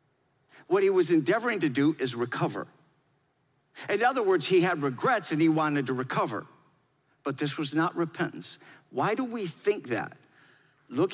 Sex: male